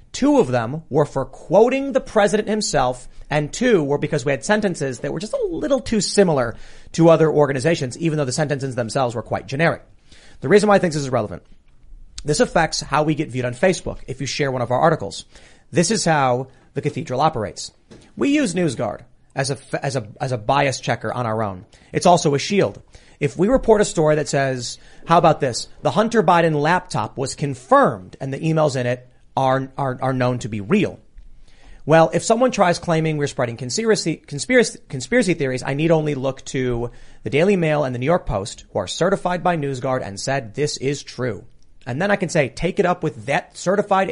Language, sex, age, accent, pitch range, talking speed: English, male, 30-49, American, 125-175 Hz, 205 wpm